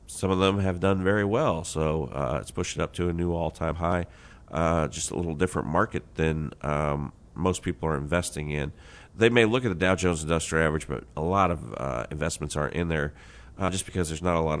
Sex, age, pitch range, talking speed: male, 40-59, 80-95 Hz, 225 wpm